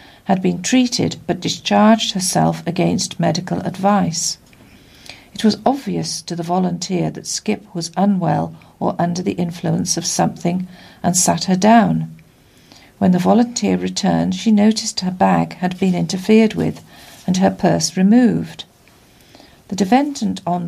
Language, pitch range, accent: English, 170-210 Hz, British